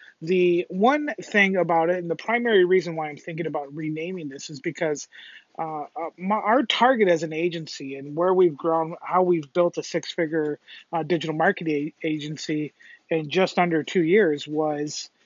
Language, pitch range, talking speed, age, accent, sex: English, 155-200 Hz, 160 wpm, 30-49, American, male